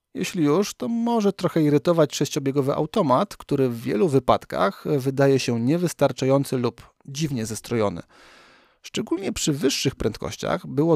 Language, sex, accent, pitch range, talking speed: Polish, male, native, 125-160 Hz, 125 wpm